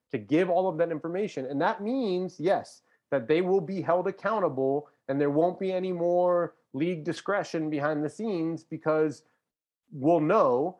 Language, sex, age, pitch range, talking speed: English, male, 30-49, 135-170 Hz, 165 wpm